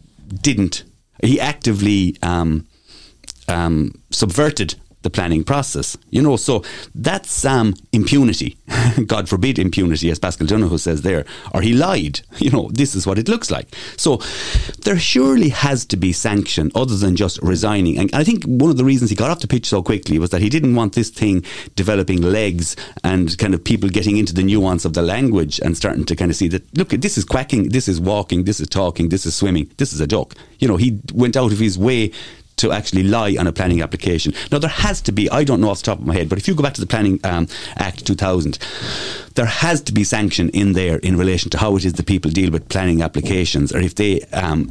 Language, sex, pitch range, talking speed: English, male, 90-125 Hz, 225 wpm